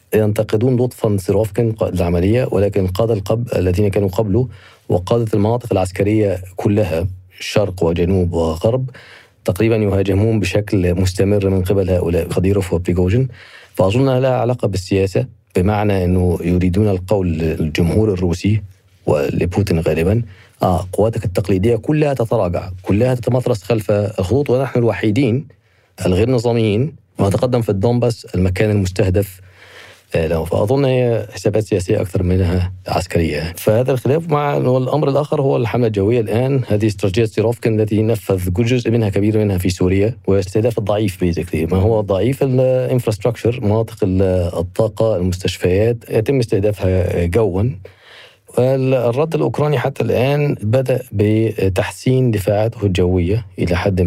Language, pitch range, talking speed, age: Arabic, 95-115 Hz, 120 wpm, 40-59